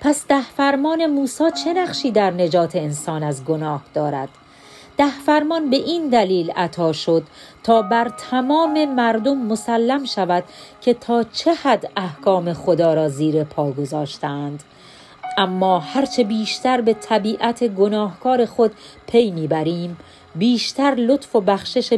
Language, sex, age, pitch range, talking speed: Persian, female, 40-59, 160-240 Hz, 130 wpm